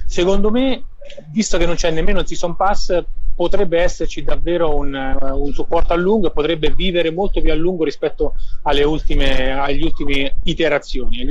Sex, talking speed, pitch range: male, 170 wpm, 140-180 Hz